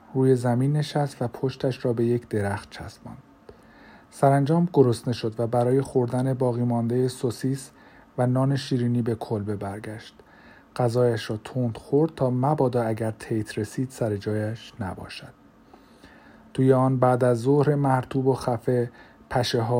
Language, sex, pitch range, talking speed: Persian, male, 115-135 Hz, 140 wpm